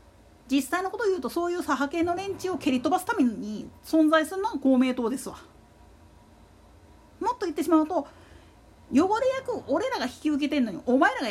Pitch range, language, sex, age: 235-350 Hz, Japanese, female, 40-59